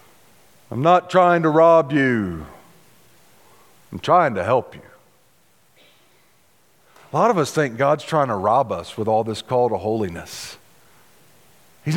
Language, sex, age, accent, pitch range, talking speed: English, male, 50-69, American, 140-205 Hz, 140 wpm